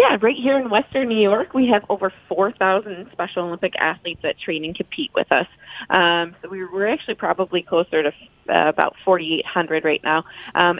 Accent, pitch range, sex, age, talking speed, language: American, 170-200 Hz, female, 30-49, 190 wpm, English